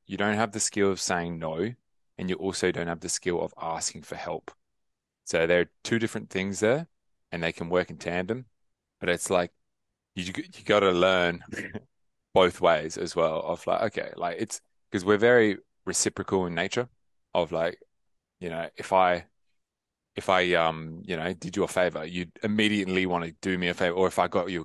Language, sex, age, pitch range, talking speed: English, male, 20-39, 85-105 Hz, 195 wpm